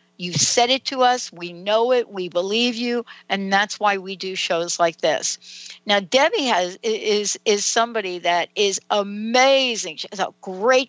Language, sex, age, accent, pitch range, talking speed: English, female, 60-79, American, 180-255 Hz, 175 wpm